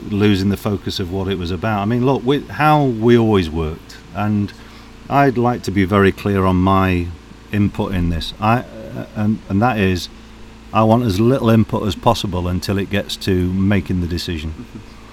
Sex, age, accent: male, 40-59, British